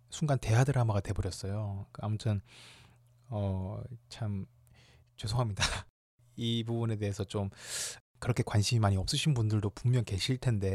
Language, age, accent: Korean, 20-39, native